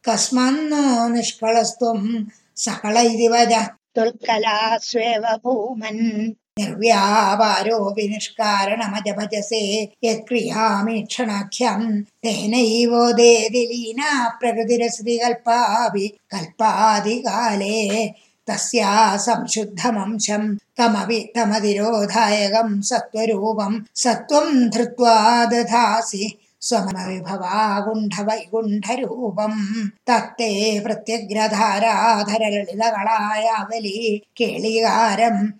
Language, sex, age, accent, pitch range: Tamil, female, 20-39, native, 215-235 Hz